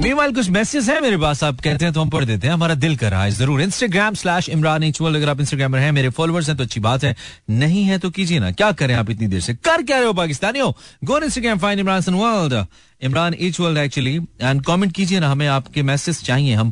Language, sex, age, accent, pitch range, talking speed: Hindi, male, 40-59, native, 125-175 Hz, 235 wpm